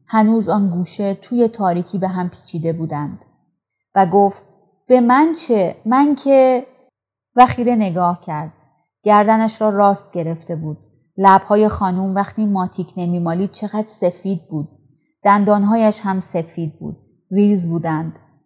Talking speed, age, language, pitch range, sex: 125 wpm, 30-49, Persian, 170-220 Hz, female